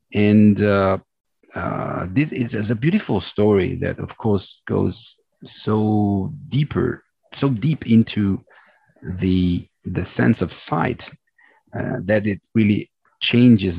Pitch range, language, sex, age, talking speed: 95-115 Hz, English, male, 50-69, 120 wpm